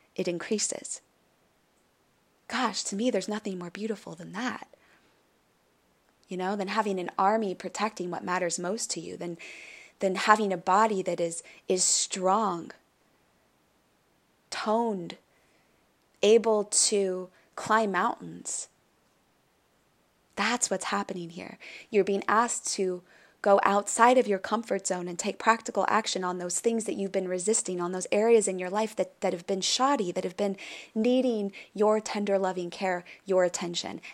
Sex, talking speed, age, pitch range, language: female, 145 wpm, 20-39, 180-215 Hz, English